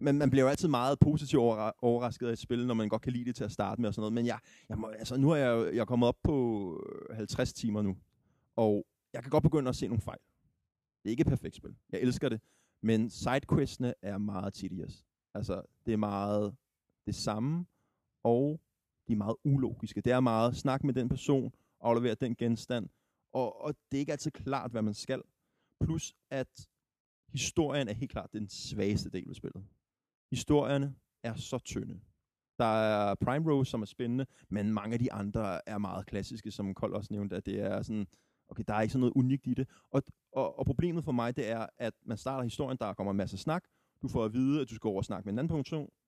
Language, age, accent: Danish, 30-49, native